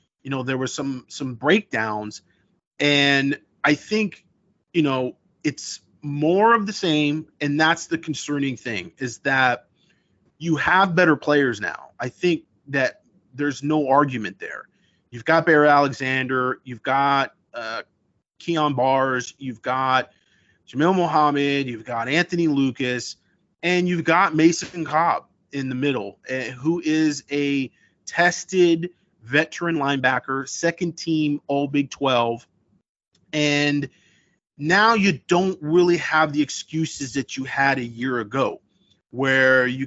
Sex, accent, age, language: male, American, 30-49, English